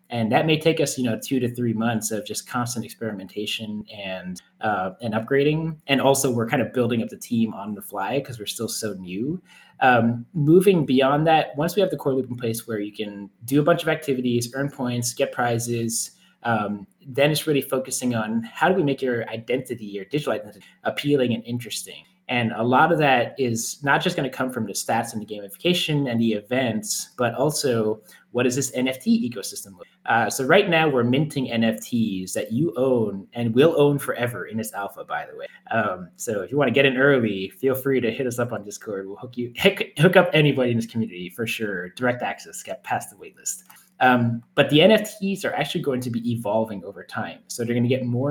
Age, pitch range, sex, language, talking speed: 20-39, 115-140 Hz, male, English, 220 wpm